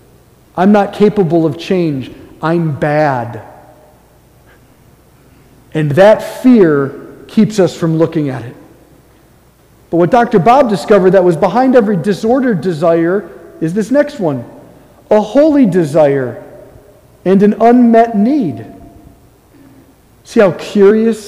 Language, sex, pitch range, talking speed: English, male, 175-255 Hz, 115 wpm